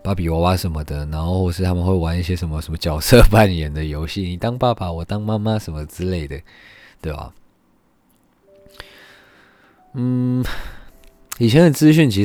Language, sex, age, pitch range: Chinese, male, 20-39, 80-100 Hz